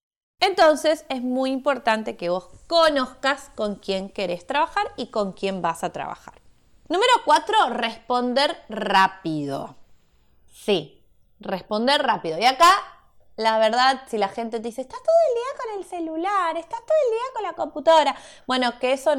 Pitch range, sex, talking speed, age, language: 195-270 Hz, female, 155 wpm, 20-39, Spanish